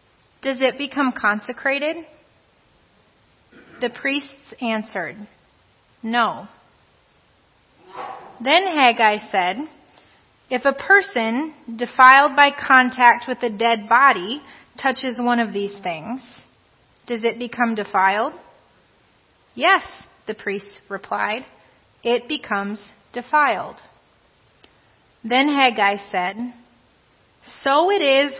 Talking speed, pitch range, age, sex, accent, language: 90 wpm, 215-275 Hz, 30-49, female, American, English